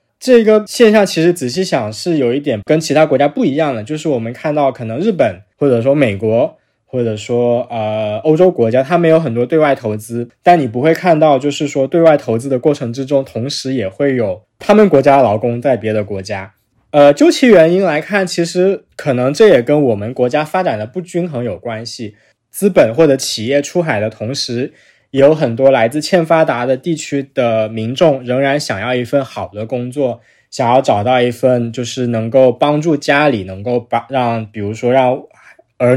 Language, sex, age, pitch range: Chinese, male, 20-39, 115-150 Hz